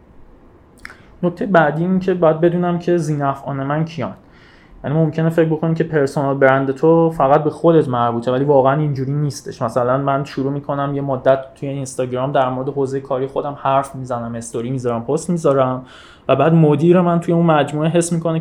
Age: 20-39